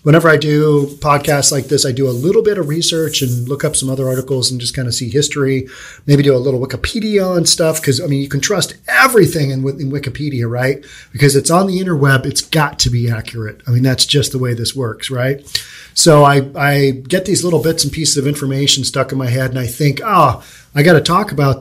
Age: 40-59